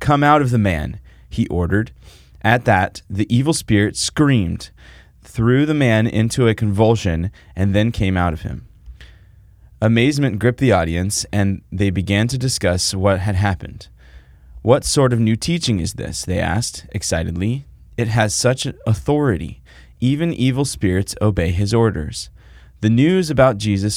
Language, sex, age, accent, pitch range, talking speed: English, male, 30-49, American, 90-115 Hz, 155 wpm